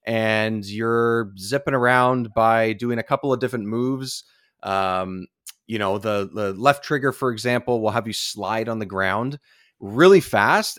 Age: 30-49